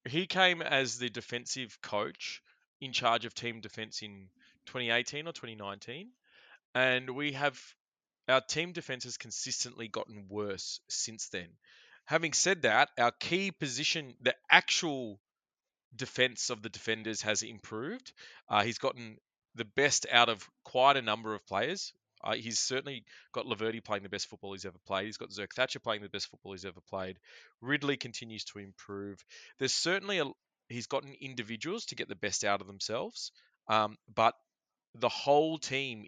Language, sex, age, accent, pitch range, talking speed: English, male, 20-39, Australian, 110-130 Hz, 165 wpm